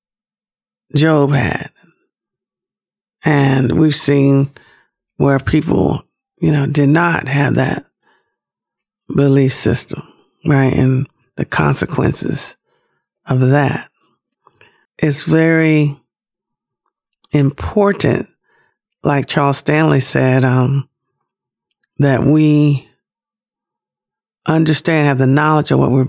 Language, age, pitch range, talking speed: English, 50-69, 135-155 Hz, 85 wpm